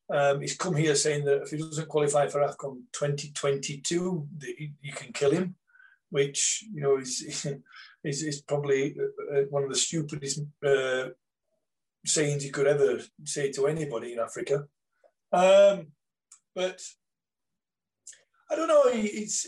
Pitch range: 140-180 Hz